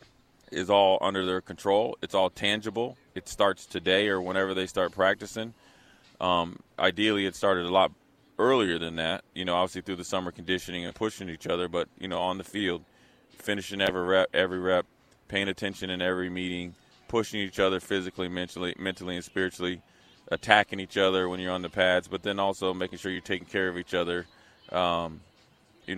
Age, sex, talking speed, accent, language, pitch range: 30-49, male, 185 wpm, American, English, 90-100 Hz